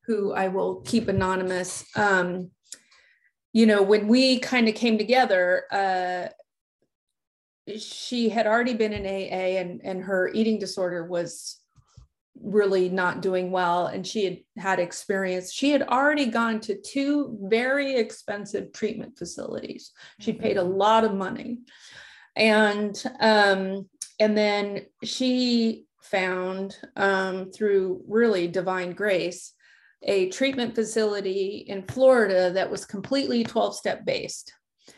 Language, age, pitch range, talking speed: English, 30-49, 190-235 Hz, 125 wpm